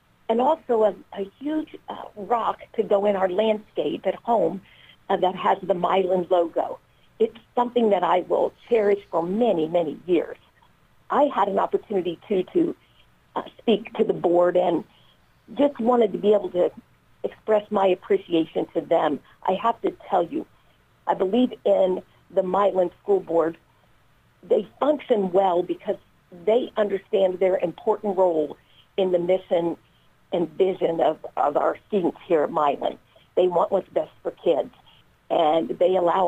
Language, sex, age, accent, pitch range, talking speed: English, female, 50-69, American, 175-215 Hz, 155 wpm